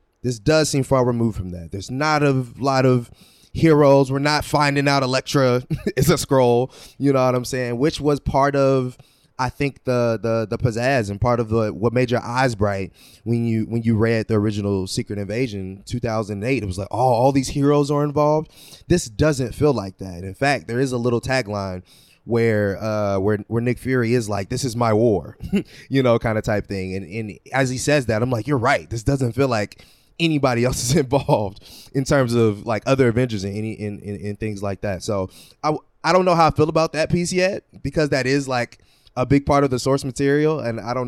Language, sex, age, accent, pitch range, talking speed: English, male, 20-39, American, 110-140 Hz, 225 wpm